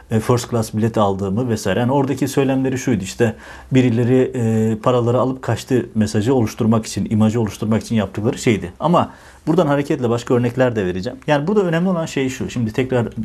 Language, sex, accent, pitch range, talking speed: Turkish, male, native, 110-140 Hz, 170 wpm